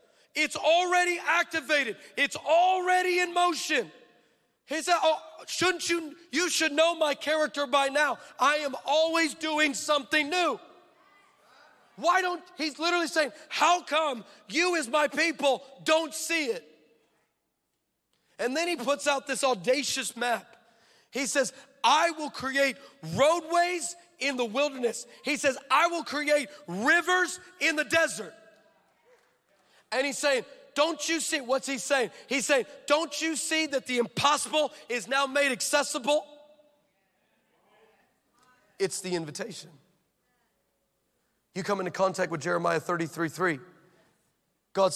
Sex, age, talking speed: male, 40-59, 130 wpm